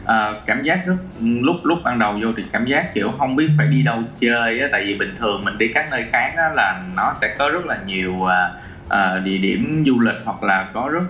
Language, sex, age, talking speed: Vietnamese, male, 20-39, 250 wpm